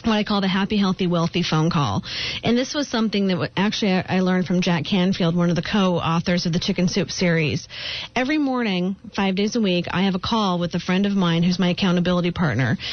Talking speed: 225 wpm